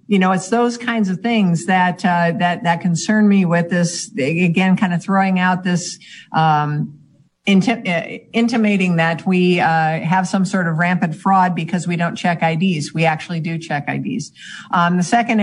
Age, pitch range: 50-69, 175-200 Hz